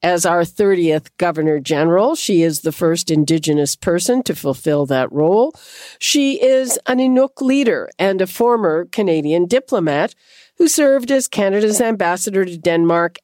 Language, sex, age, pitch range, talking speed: English, female, 50-69, 165-230 Hz, 145 wpm